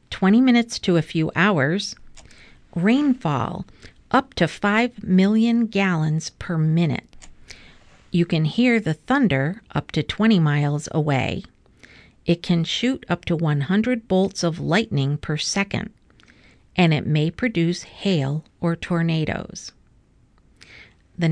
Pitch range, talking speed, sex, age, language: 155-200 Hz, 120 wpm, female, 50-69, English